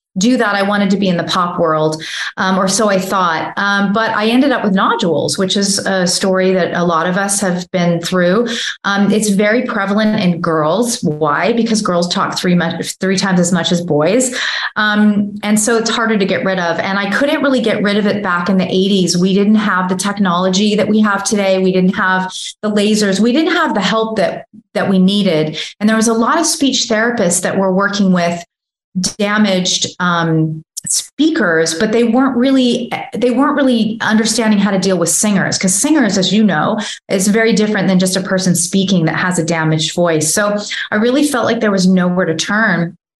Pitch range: 180-215 Hz